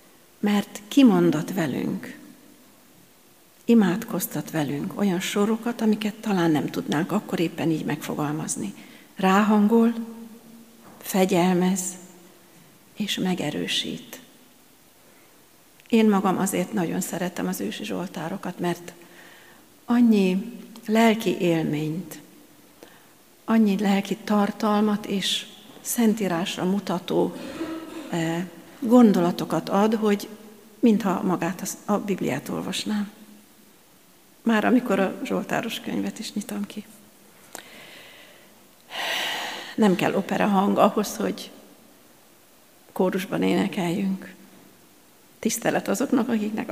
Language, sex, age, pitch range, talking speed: Hungarian, female, 50-69, 185-230 Hz, 80 wpm